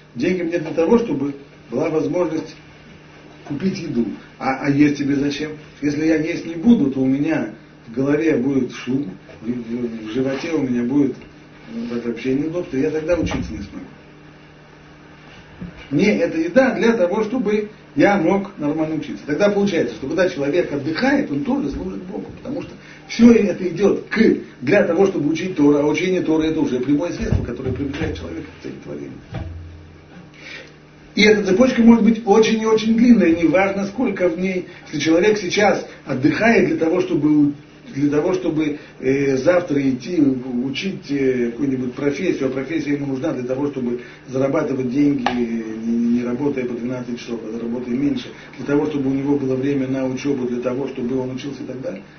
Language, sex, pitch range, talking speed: Russian, male, 130-185 Hz, 170 wpm